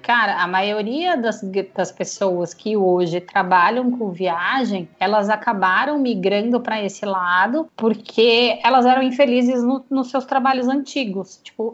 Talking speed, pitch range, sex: 140 wpm, 195-260 Hz, female